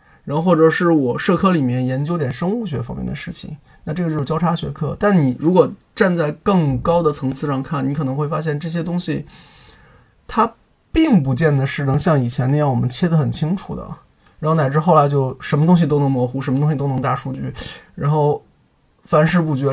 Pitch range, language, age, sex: 135-170 Hz, Chinese, 20-39, male